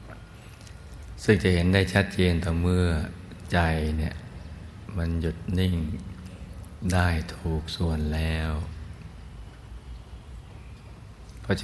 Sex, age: male, 60-79